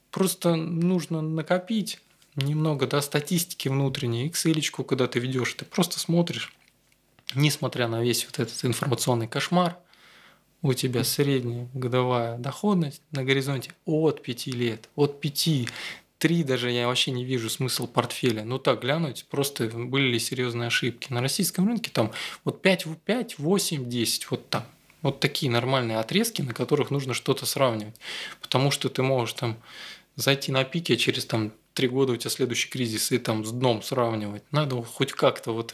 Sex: male